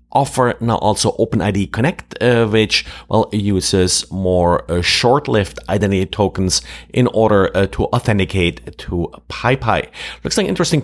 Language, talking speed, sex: English, 135 wpm, male